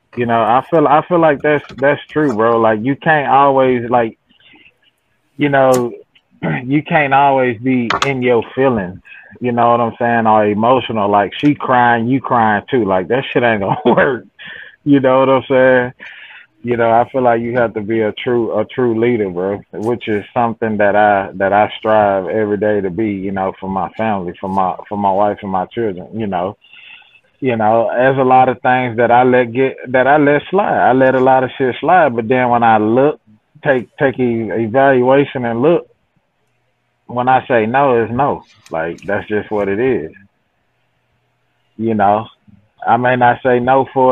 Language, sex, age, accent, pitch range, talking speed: English, male, 20-39, American, 110-130 Hz, 195 wpm